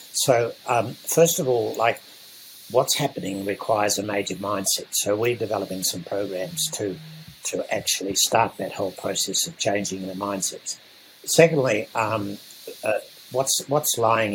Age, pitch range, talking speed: 60-79, 100-115 Hz, 140 wpm